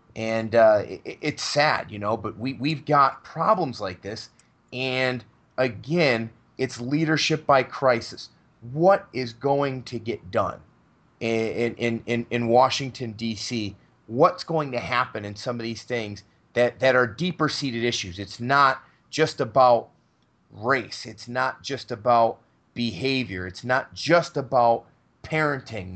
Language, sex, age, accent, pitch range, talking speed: English, male, 30-49, American, 115-140 Hz, 140 wpm